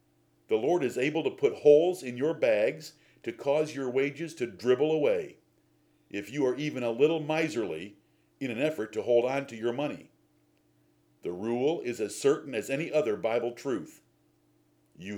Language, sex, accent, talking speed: English, male, American, 175 wpm